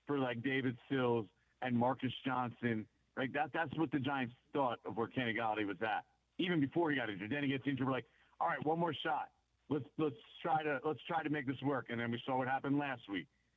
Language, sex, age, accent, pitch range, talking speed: English, male, 50-69, American, 115-145 Hz, 240 wpm